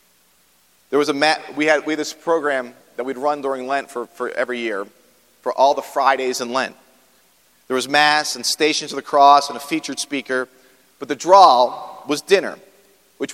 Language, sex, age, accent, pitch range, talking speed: English, male, 40-59, American, 135-170 Hz, 195 wpm